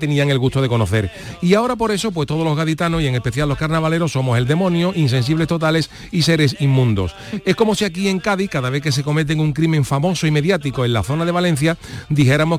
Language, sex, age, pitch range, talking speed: Spanish, male, 40-59, 140-180 Hz, 230 wpm